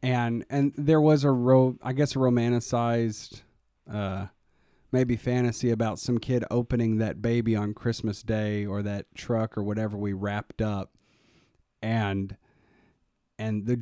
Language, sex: English, male